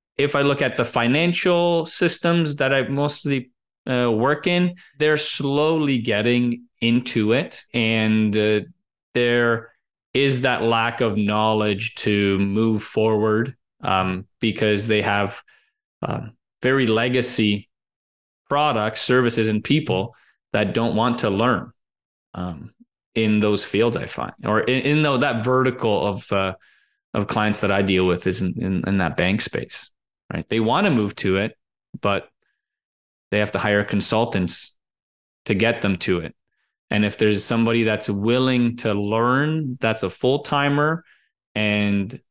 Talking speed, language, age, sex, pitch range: 145 wpm, English, 20-39, male, 105-130 Hz